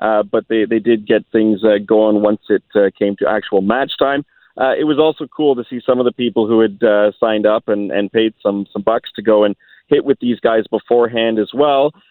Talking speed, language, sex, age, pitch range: 245 wpm, English, male, 40-59, 105-130 Hz